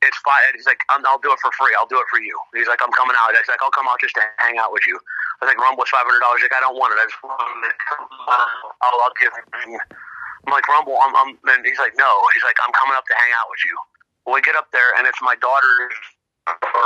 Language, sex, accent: English, male, American